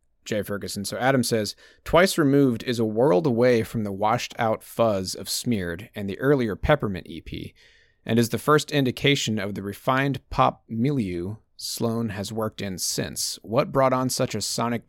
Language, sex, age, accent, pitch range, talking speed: English, male, 30-49, American, 100-130 Hz, 175 wpm